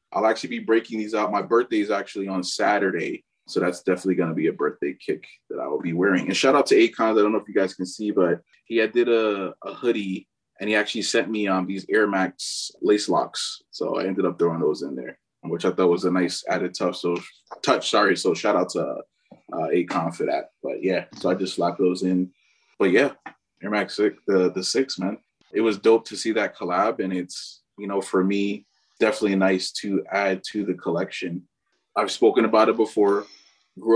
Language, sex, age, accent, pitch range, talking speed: English, male, 20-39, American, 95-115 Hz, 225 wpm